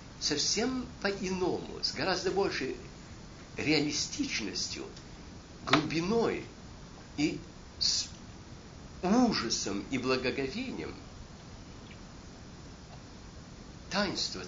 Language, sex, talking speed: Russian, male, 55 wpm